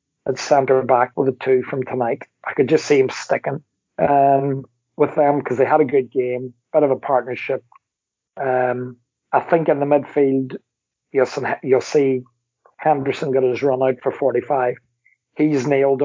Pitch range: 125-140 Hz